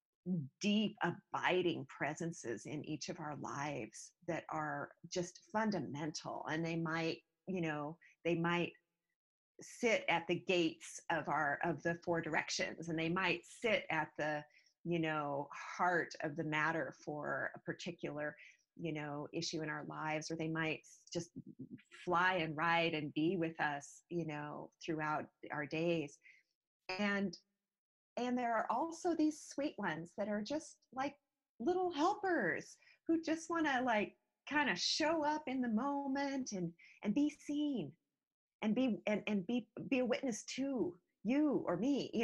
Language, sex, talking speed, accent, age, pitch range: English, female, 155 wpm, American, 30-49, 160-230 Hz